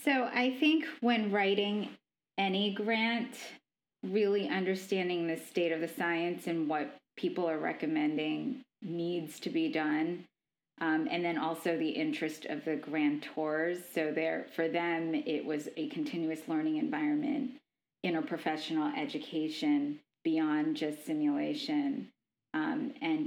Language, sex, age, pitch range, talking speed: English, female, 20-39, 155-195 Hz, 125 wpm